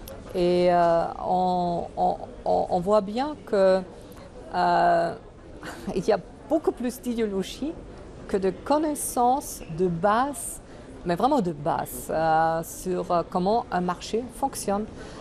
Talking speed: 120 wpm